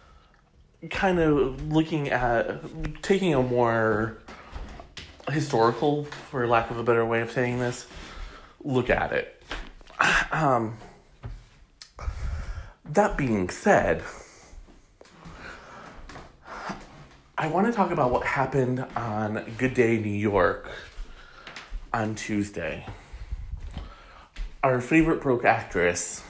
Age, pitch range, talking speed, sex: 30-49, 105-150 Hz, 95 wpm, male